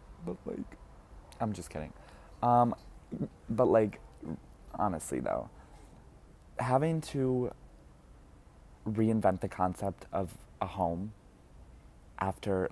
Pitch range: 85-110 Hz